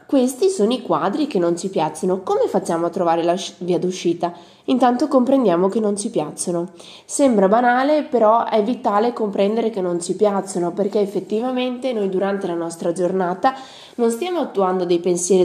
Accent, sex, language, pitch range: native, female, Italian, 185-235 Hz